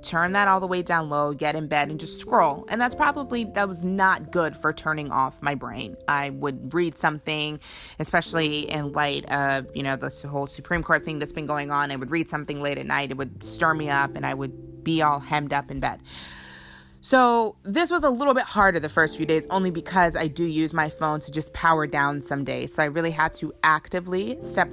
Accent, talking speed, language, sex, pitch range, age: American, 235 wpm, English, female, 140-185 Hz, 20-39